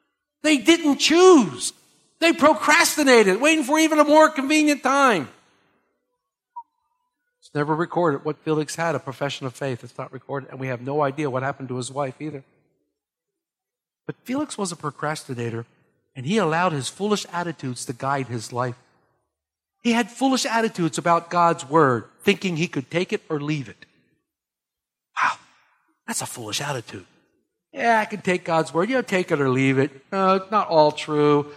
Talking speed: 170 wpm